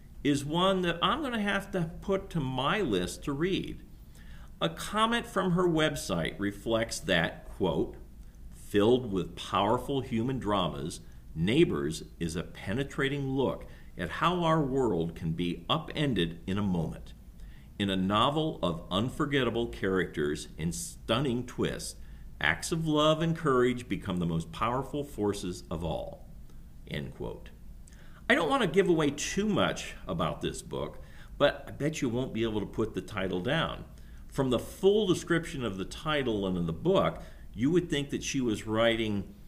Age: 50-69